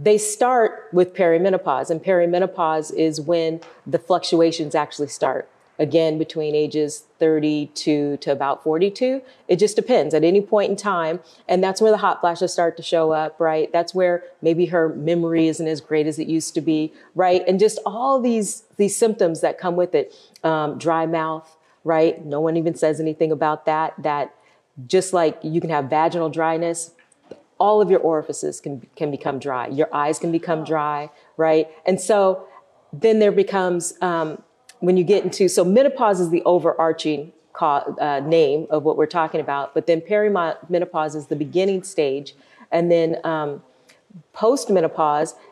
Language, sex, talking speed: English, female, 170 wpm